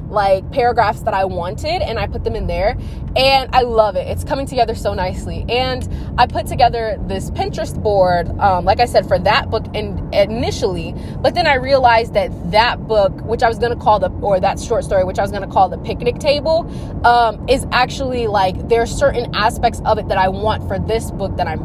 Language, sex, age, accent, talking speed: English, female, 20-39, American, 225 wpm